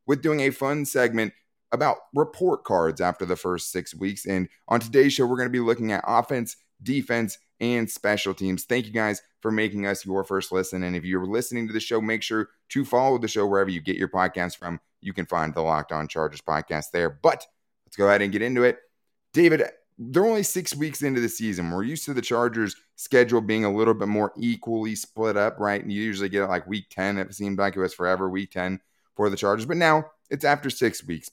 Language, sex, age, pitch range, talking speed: English, male, 30-49, 95-120 Hz, 230 wpm